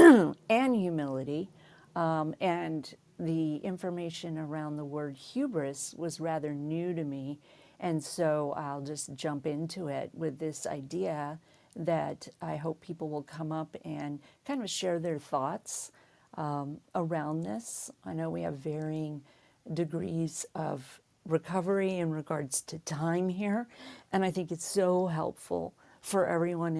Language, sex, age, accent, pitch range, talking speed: English, female, 50-69, American, 150-170 Hz, 140 wpm